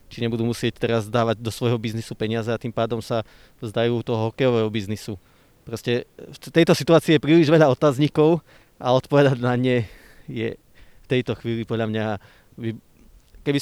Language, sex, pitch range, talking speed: Slovak, male, 110-130 Hz, 160 wpm